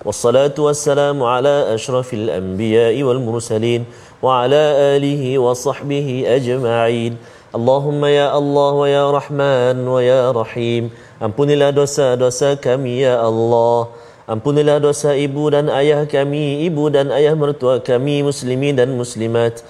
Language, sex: Malayalam, male